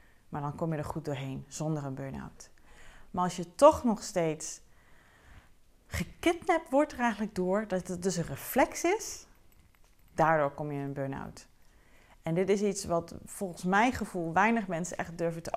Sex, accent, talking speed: female, Dutch, 175 wpm